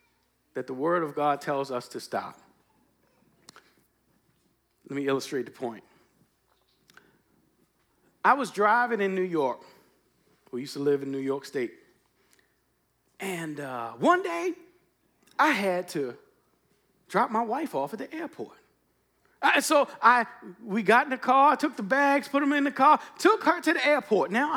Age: 40-59